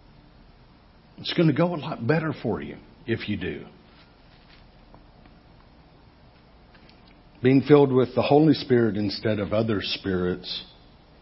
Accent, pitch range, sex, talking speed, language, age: American, 110-145 Hz, male, 120 wpm, English, 50-69